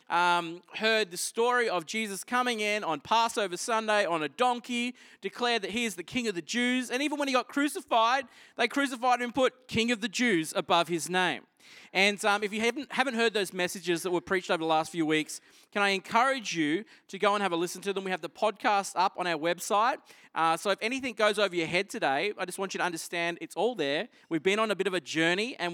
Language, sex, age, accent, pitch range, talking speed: English, male, 20-39, Australian, 180-235 Hz, 245 wpm